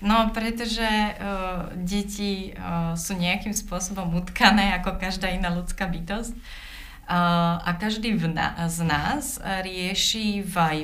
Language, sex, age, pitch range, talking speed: Slovak, female, 30-49, 170-195 Hz, 135 wpm